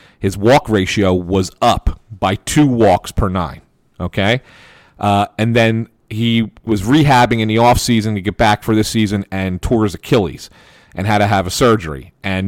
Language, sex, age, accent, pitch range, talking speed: English, male, 40-59, American, 105-130 Hz, 180 wpm